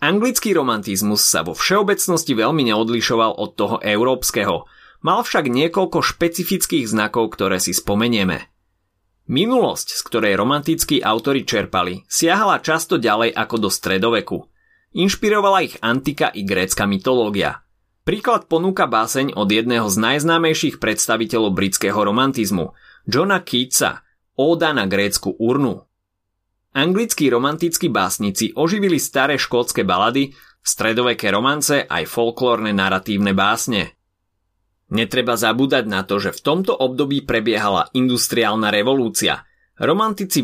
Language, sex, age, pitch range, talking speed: Slovak, male, 30-49, 100-145 Hz, 115 wpm